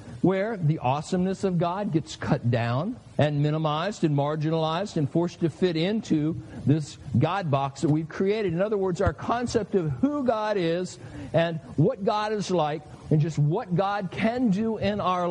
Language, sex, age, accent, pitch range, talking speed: English, male, 60-79, American, 145-200 Hz, 175 wpm